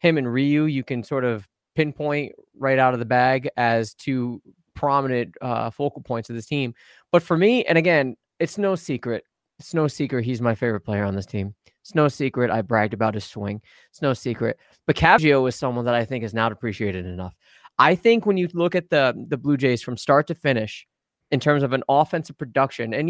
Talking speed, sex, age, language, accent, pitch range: 215 wpm, male, 20-39, English, American, 120-155 Hz